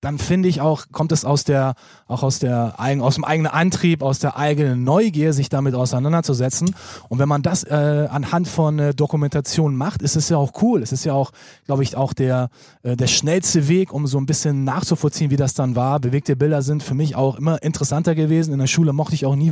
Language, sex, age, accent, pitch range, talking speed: German, male, 20-39, German, 130-160 Hz, 225 wpm